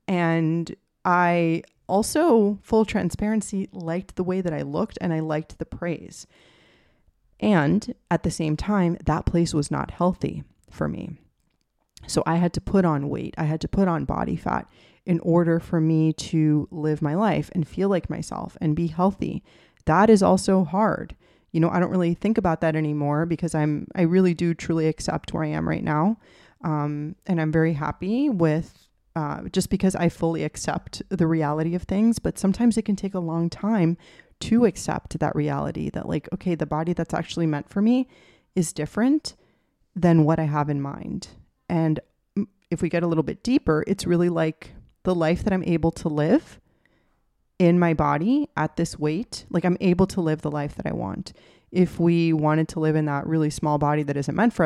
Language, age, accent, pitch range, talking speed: English, 30-49, American, 155-190 Hz, 195 wpm